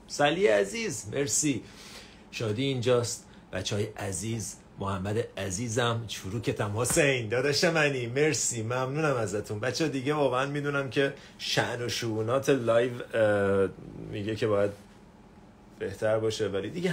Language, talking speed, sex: Persian, 120 wpm, male